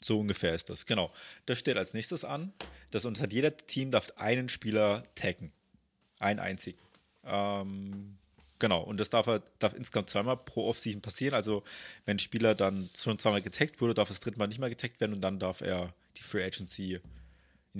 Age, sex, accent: 30-49, male, German